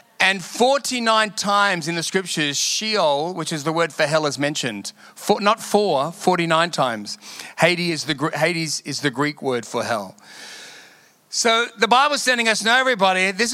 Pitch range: 180-225 Hz